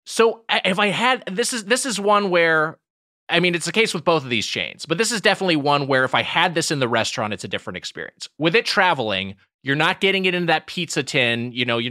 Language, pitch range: English, 120-165 Hz